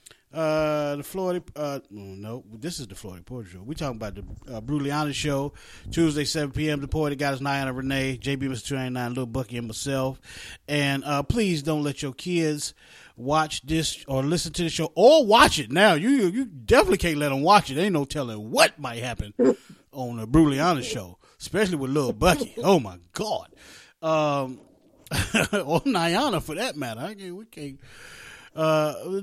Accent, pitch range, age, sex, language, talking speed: American, 115-155 Hz, 30-49, male, English, 180 wpm